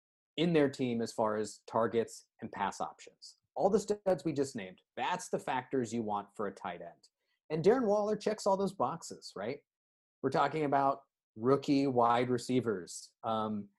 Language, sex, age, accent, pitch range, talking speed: English, male, 30-49, American, 115-165 Hz, 175 wpm